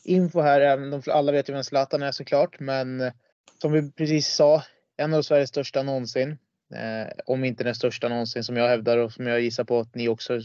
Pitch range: 120-150 Hz